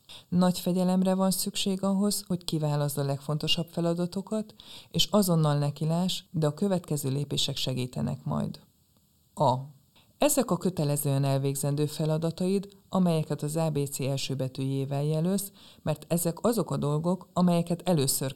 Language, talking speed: Hungarian, 125 wpm